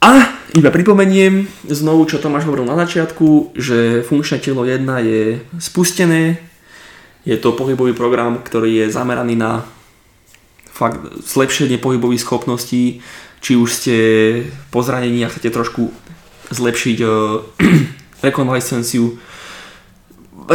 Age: 20-39